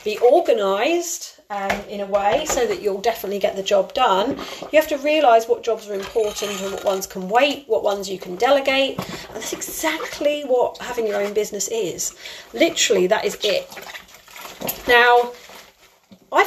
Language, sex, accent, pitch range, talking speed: English, female, British, 205-290 Hz, 170 wpm